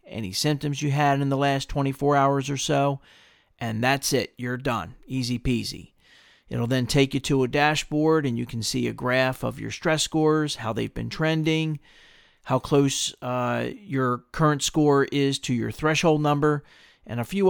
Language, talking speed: English, 180 wpm